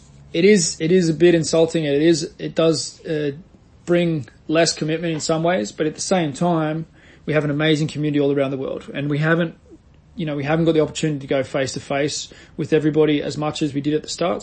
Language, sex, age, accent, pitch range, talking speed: English, male, 20-39, Australian, 140-165 Hz, 235 wpm